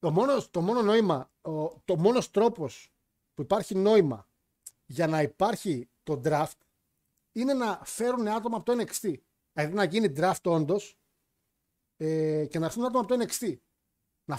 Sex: male